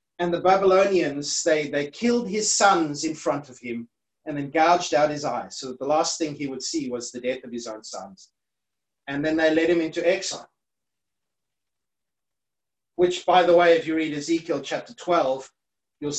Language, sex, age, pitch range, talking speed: English, male, 30-49, 135-180 Hz, 190 wpm